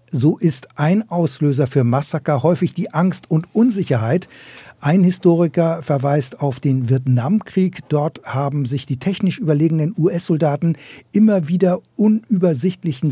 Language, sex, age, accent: German, male, 60-79, German